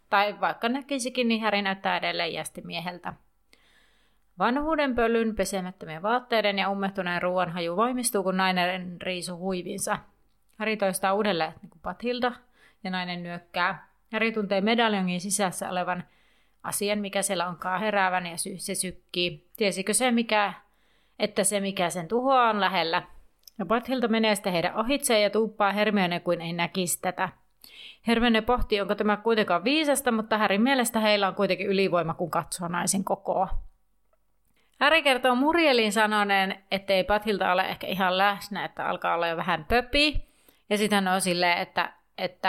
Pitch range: 180-220 Hz